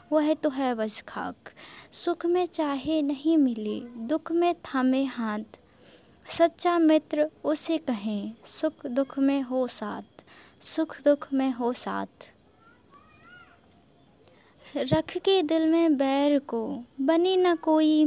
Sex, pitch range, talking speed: female, 250-305 Hz, 120 wpm